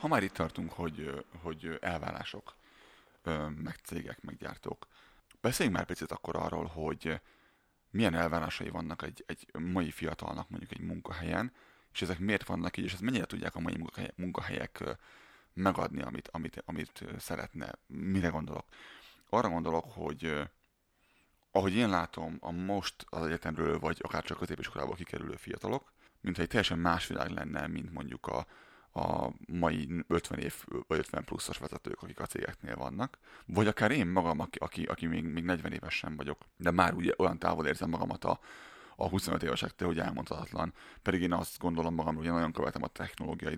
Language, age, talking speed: Hungarian, 30-49, 160 wpm